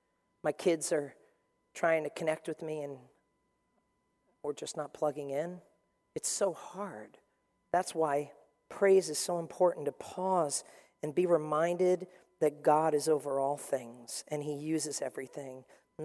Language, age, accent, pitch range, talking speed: English, 40-59, American, 145-185 Hz, 145 wpm